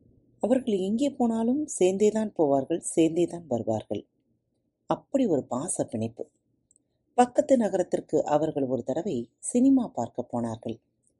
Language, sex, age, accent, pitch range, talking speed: Tamil, female, 30-49, native, 125-200 Hz, 105 wpm